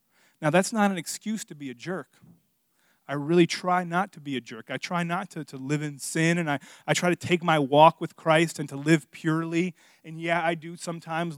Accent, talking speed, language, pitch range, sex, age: American, 230 wpm, English, 140-190 Hz, male, 30-49